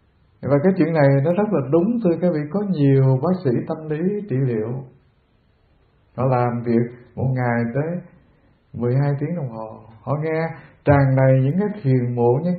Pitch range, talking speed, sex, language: 120-175 Hz, 180 wpm, male, English